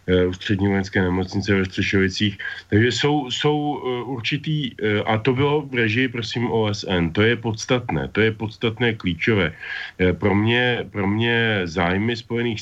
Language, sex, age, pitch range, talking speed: Slovak, male, 40-59, 90-105 Hz, 145 wpm